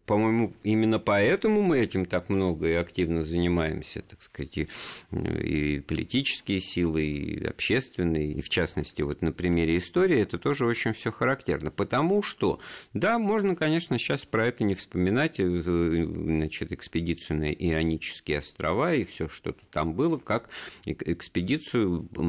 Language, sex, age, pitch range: Russian, male, 50-69, 85-120 Hz